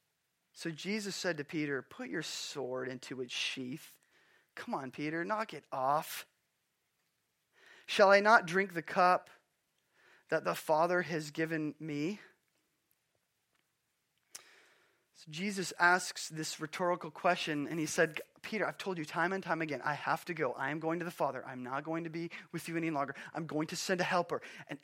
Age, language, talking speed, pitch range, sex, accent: 20-39, English, 175 wpm, 150-190 Hz, male, American